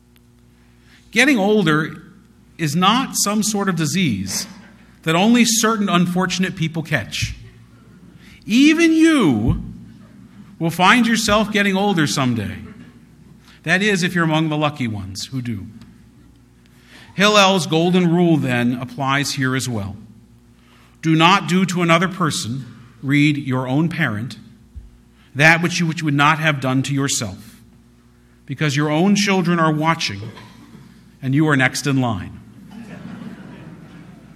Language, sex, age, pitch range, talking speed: English, male, 50-69, 115-190 Hz, 125 wpm